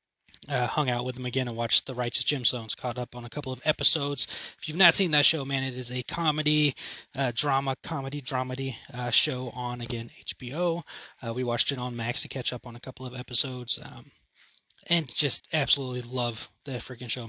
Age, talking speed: 20-39, 210 wpm